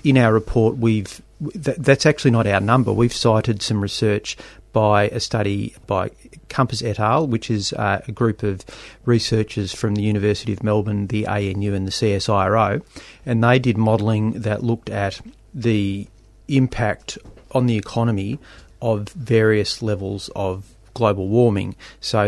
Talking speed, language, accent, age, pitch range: 145 wpm, English, Australian, 30-49, 100-115 Hz